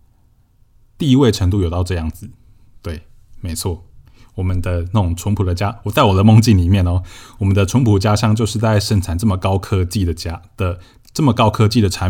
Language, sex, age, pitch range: Chinese, male, 20-39, 90-115 Hz